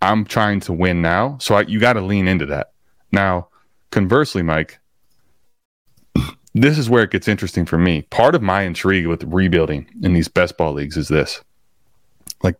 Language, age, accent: English, 20-39, American